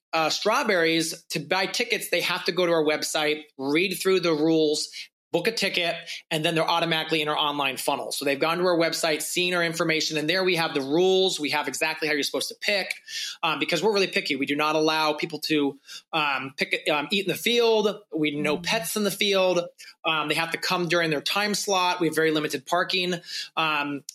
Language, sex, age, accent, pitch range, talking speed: English, male, 30-49, American, 155-185 Hz, 225 wpm